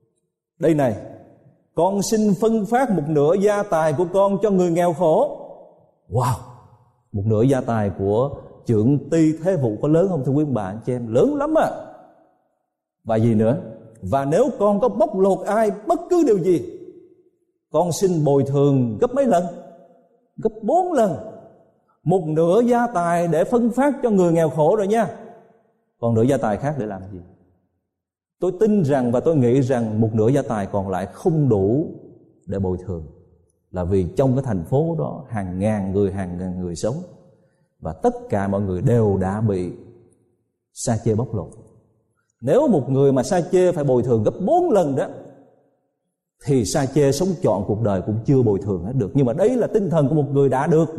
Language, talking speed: Vietnamese, 195 wpm